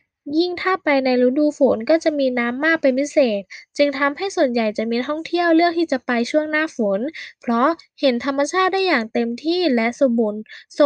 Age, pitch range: 10-29, 240-305 Hz